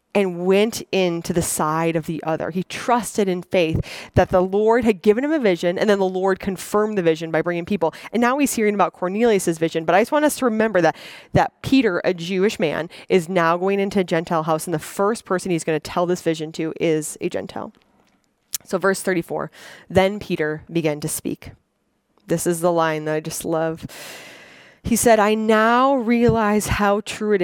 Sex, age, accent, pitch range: female, 20-39, American, 170-210 Hz